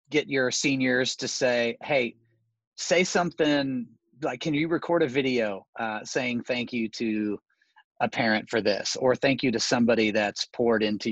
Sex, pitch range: male, 115-135 Hz